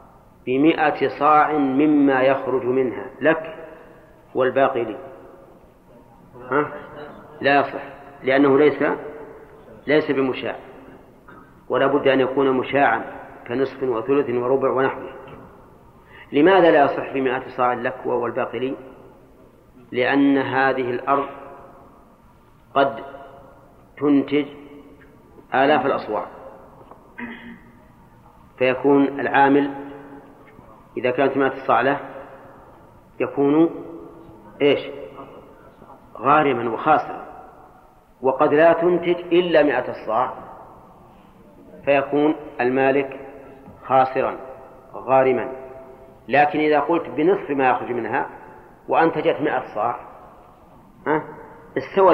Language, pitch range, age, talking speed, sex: Arabic, 130-150 Hz, 40-59, 85 wpm, male